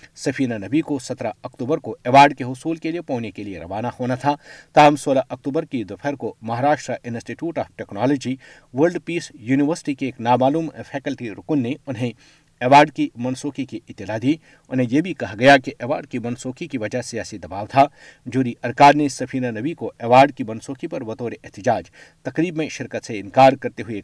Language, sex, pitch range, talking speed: Urdu, male, 120-145 Hz, 190 wpm